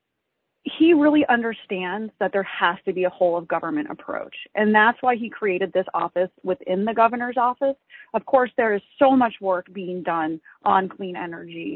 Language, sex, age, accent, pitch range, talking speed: English, female, 30-49, American, 180-245 Hz, 185 wpm